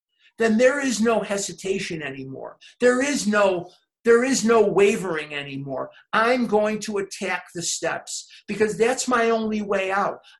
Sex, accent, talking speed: male, American, 140 wpm